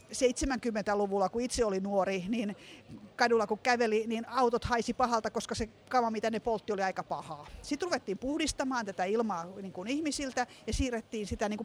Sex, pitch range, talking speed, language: female, 195-255 Hz, 175 wpm, Finnish